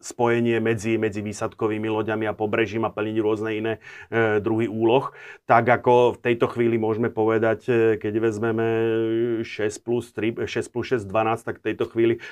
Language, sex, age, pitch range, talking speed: Slovak, male, 30-49, 110-120 Hz, 165 wpm